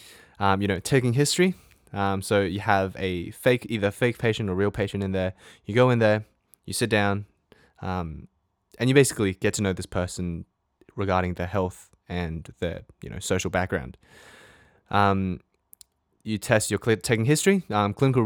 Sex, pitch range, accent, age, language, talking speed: male, 90-105 Hz, Australian, 20-39, English, 170 wpm